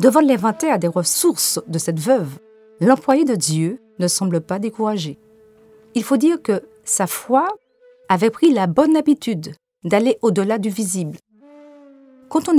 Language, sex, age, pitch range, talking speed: French, female, 40-59, 185-265 Hz, 150 wpm